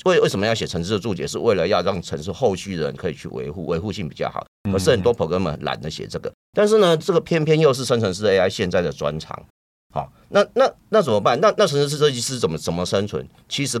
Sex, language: male, Chinese